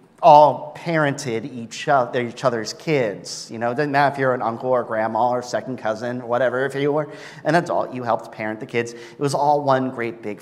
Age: 40-59